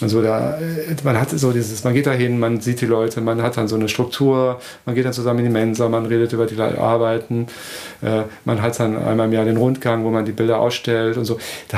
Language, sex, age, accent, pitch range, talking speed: German, male, 40-59, German, 115-135 Hz, 245 wpm